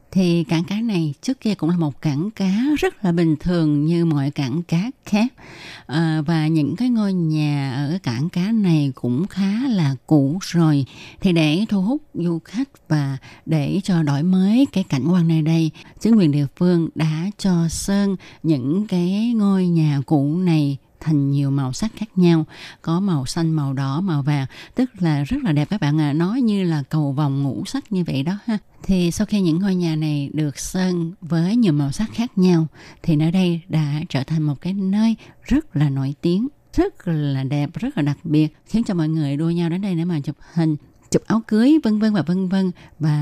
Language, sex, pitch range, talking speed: Vietnamese, female, 150-190 Hz, 210 wpm